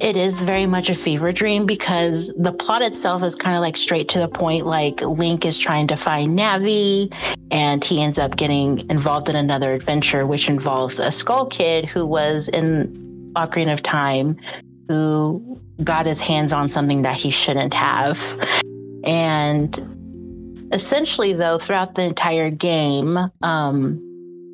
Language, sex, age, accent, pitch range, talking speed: English, female, 30-49, American, 145-175 Hz, 155 wpm